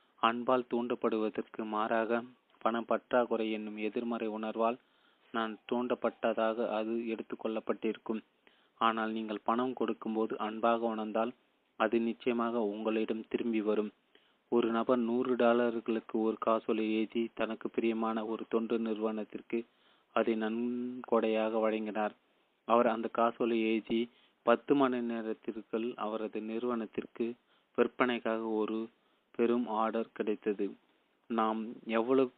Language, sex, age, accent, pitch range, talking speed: Tamil, male, 30-49, native, 110-120 Hz, 95 wpm